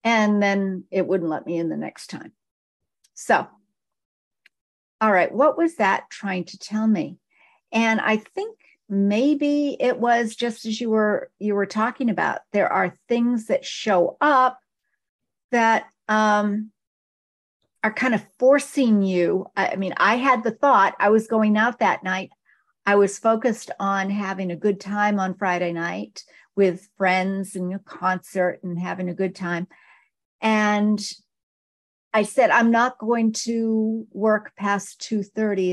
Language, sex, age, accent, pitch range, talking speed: English, female, 50-69, American, 185-225 Hz, 150 wpm